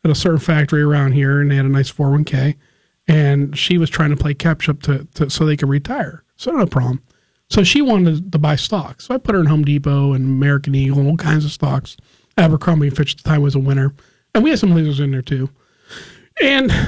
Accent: American